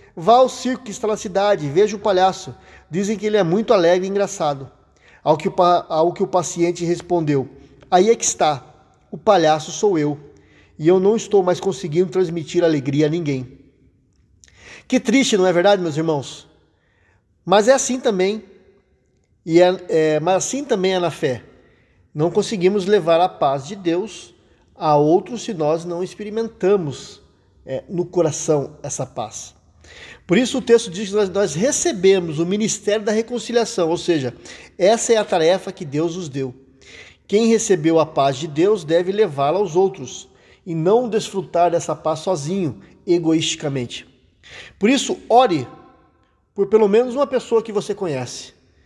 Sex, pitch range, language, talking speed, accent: male, 155-210 Hz, Portuguese, 160 wpm, Brazilian